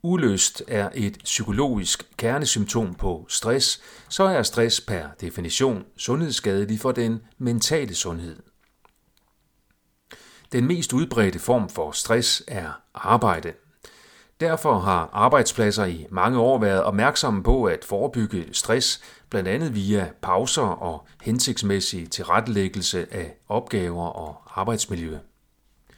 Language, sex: Danish, male